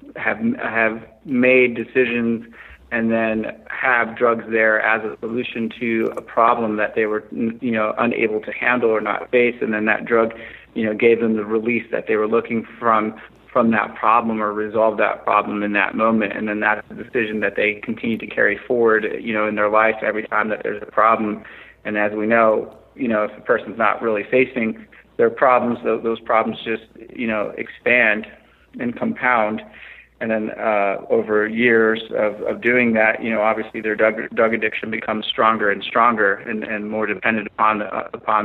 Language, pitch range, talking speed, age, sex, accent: English, 110-115 Hz, 190 wpm, 30-49, male, American